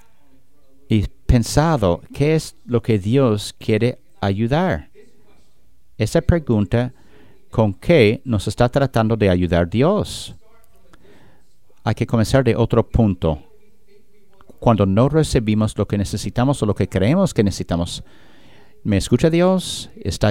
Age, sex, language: 50-69, male, English